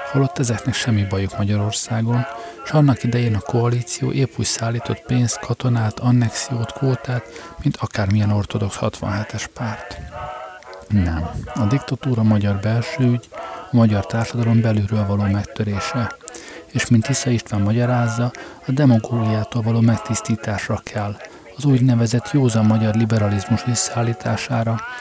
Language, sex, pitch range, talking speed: Hungarian, male, 110-125 Hz, 120 wpm